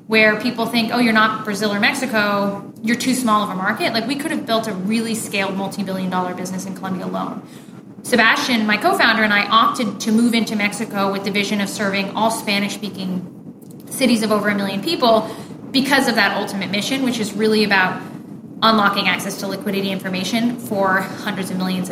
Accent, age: American, 20-39